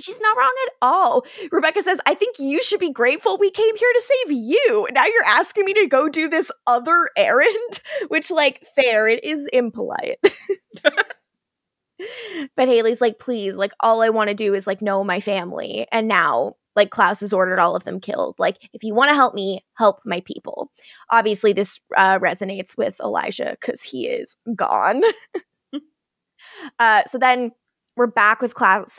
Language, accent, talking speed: English, American, 180 wpm